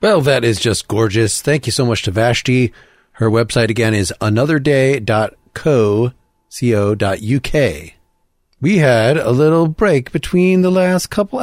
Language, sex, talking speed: English, male, 130 wpm